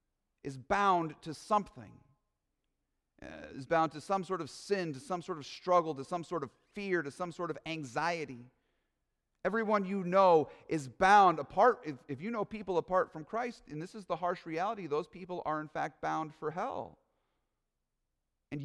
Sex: male